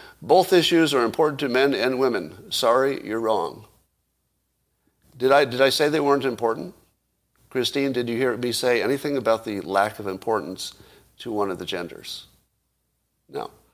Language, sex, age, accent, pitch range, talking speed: English, male, 50-69, American, 110-150 Hz, 155 wpm